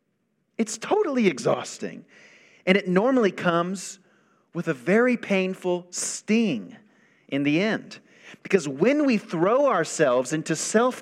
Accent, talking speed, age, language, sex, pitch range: American, 120 wpm, 40-59, English, male, 145-225 Hz